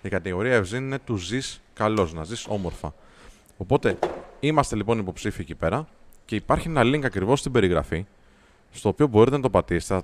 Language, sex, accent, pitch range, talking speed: Greek, male, native, 95-130 Hz, 180 wpm